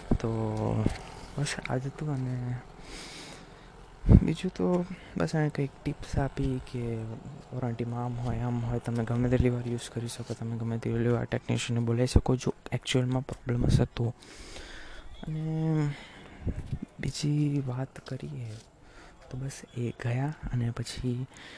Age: 20-39